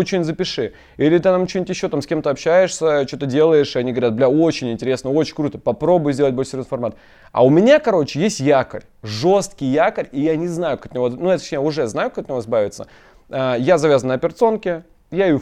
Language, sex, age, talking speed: Russian, male, 20-39, 215 wpm